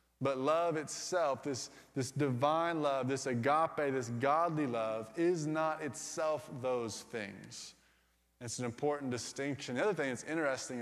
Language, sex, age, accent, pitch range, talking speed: English, male, 20-39, American, 135-155 Hz, 145 wpm